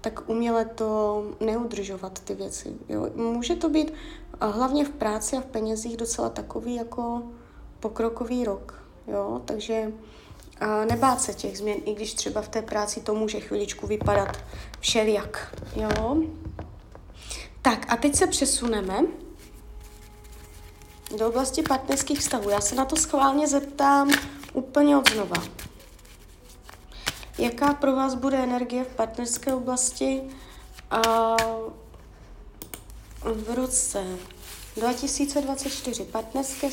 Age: 20-39